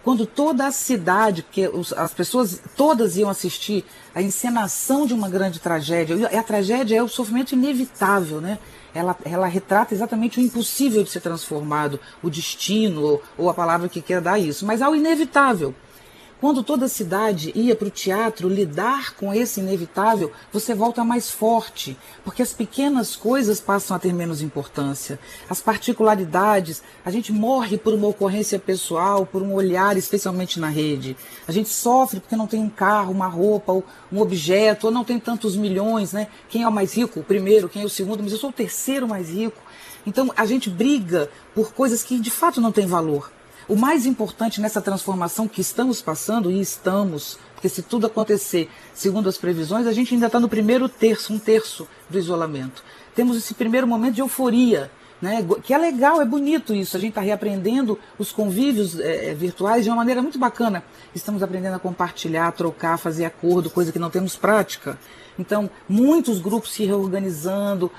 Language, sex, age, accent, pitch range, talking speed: Portuguese, female, 40-59, Brazilian, 185-230 Hz, 180 wpm